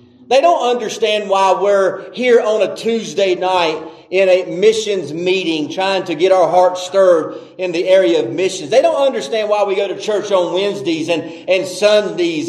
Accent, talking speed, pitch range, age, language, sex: American, 185 wpm, 180-210 Hz, 40-59, English, male